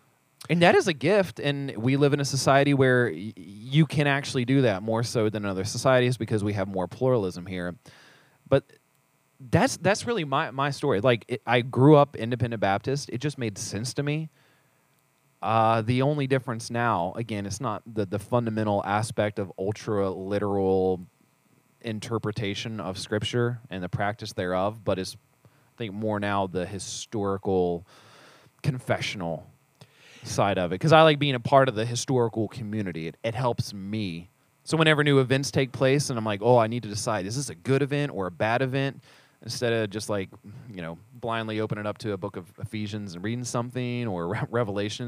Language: English